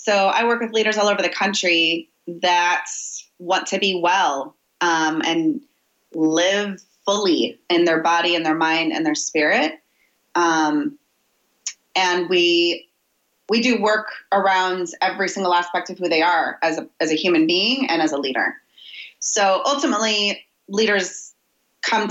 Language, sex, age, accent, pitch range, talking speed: English, female, 30-49, American, 170-220 Hz, 150 wpm